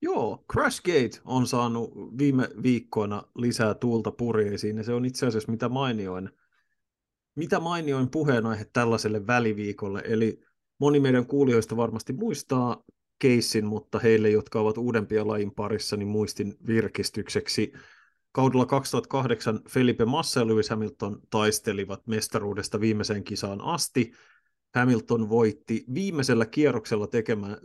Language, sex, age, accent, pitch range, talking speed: Finnish, male, 30-49, native, 105-125 Hz, 120 wpm